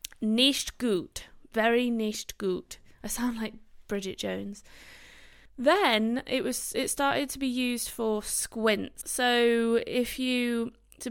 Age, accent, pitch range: 20-39, British, 190-235 Hz